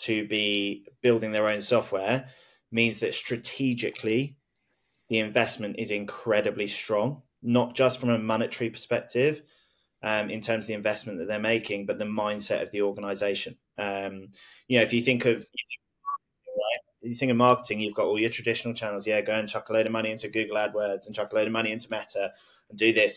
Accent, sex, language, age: British, male, English, 20-39